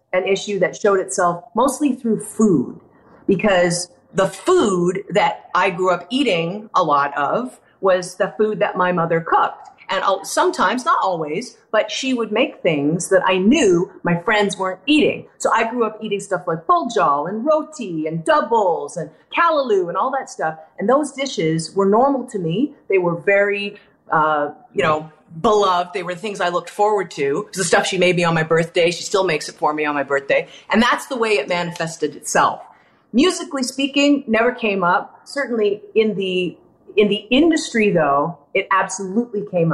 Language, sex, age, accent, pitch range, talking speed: English, female, 30-49, American, 170-225 Hz, 180 wpm